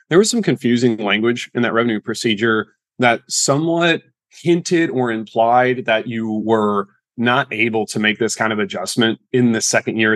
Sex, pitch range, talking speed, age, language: male, 105-125 Hz, 170 wpm, 30-49, English